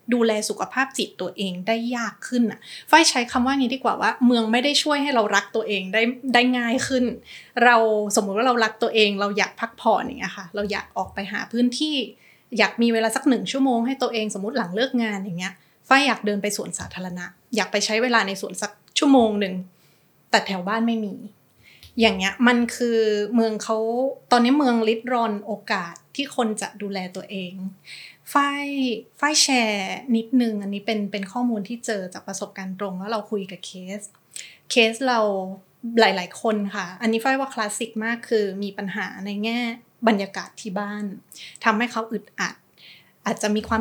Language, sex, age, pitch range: Thai, female, 20-39, 200-235 Hz